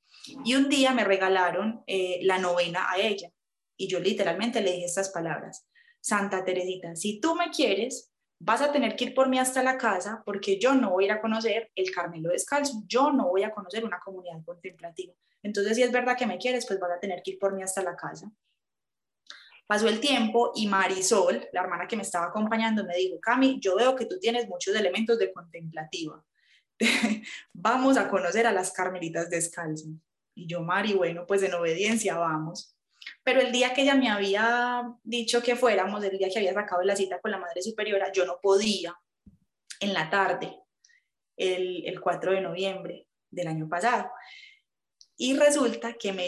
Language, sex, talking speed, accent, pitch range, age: Spanish, female, 190 wpm, Colombian, 185-240 Hz, 20-39